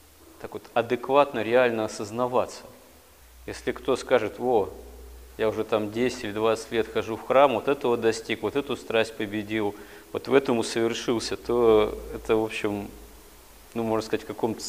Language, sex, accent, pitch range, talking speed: Russian, male, native, 105-125 Hz, 160 wpm